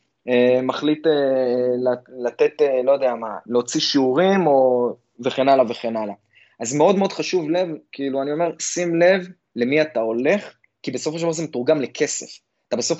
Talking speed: 175 wpm